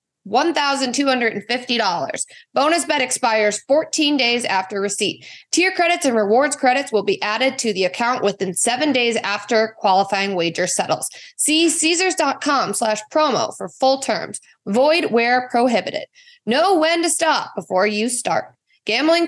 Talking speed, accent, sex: 135 wpm, American, female